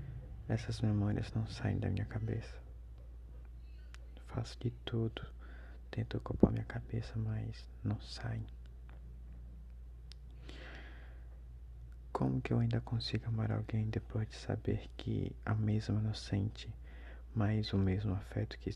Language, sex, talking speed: Portuguese, male, 120 wpm